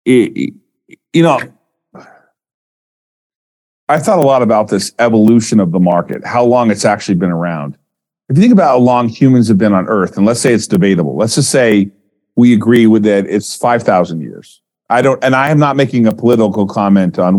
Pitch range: 95-125 Hz